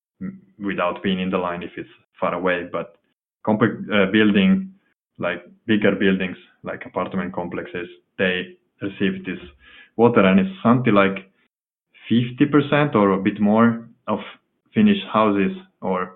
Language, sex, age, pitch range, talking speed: English, male, 20-39, 95-115 Hz, 135 wpm